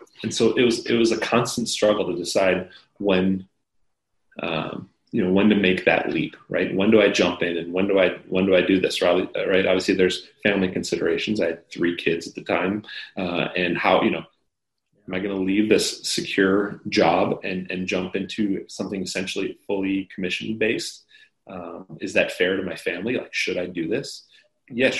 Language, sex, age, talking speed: English, male, 30-49, 200 wpm